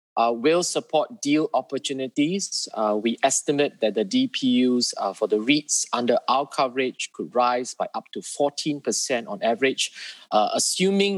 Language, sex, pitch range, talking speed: English, male, 115-155 Hz, 150 wpm